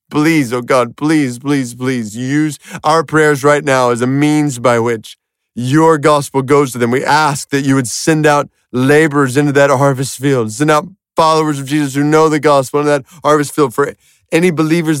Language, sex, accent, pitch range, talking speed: English, male, American, 110-150 Hz, 195 wpm